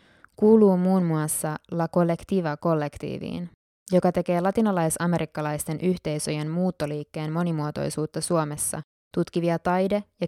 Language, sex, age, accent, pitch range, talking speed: Finnish, female, 20-39, native, 150-185 Hz, 95 wpm